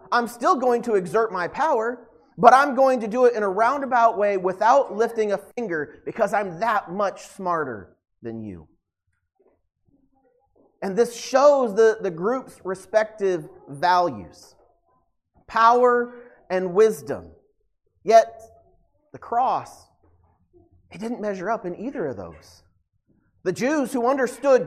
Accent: American